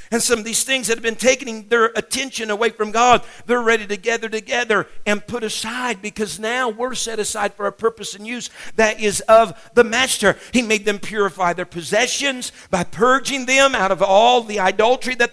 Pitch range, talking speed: 210-255 Hz, 205 wpm